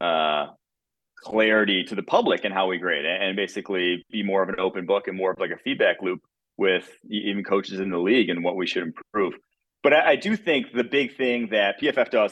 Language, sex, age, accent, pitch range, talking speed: English, male, 30-49, American, 100-120 Hz, 225 wpm